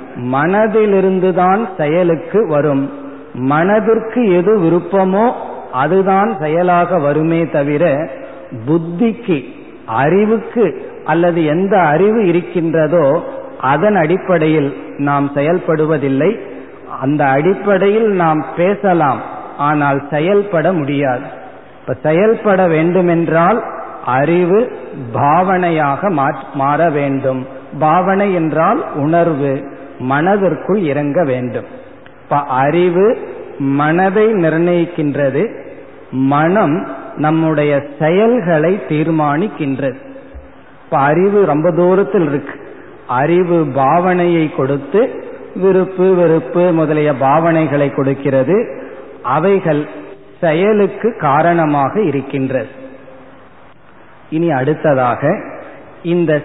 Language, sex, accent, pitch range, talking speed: Tamil, male, native, 145-190 Hz, 70 wpm